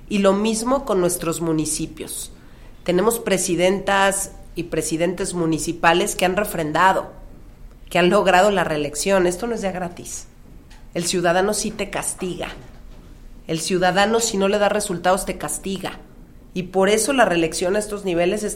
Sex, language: female, Spanish